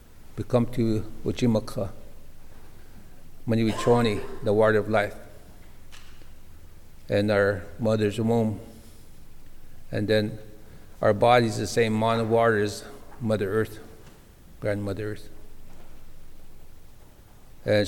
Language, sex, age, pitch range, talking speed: English, male, 60-79, 95-115 Hz, 95 wpm